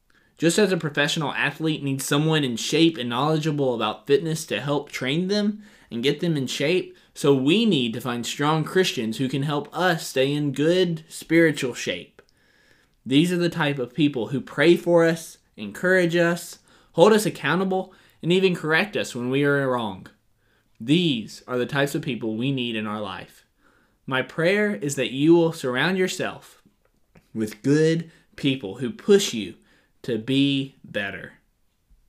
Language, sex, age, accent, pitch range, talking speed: English, male, 20-39, American, 120-165 Hz, 165 wpm